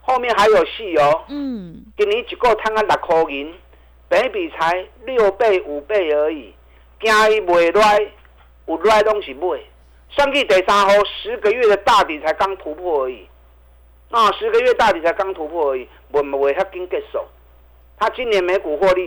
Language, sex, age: Chinese, male, 50-69